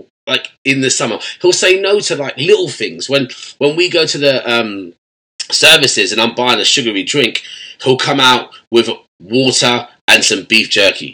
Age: 20-39